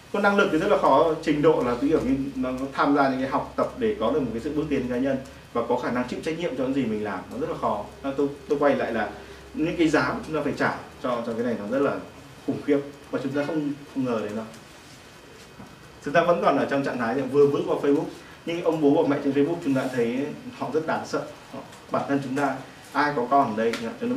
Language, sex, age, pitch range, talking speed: Vietnamese, male, 20-39, 140-210 Hz, 275 wpm